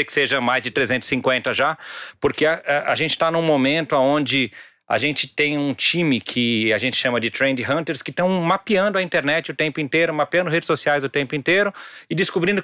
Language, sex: Portuguese, male